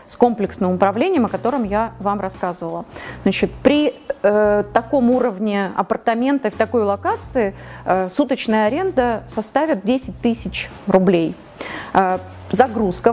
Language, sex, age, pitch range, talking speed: Russian, female, 30-49, 200-255 Hz, 115 wpm